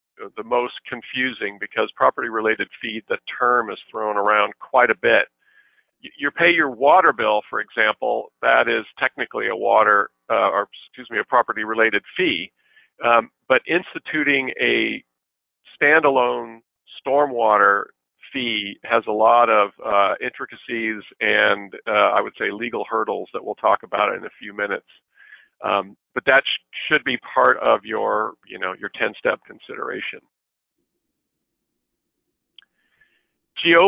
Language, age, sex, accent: English, 50-69, male, American